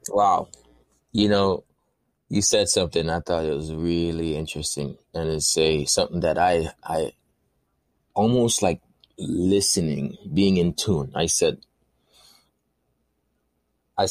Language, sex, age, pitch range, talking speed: English, male, 20-39, 80-100 Hz, 120 wpm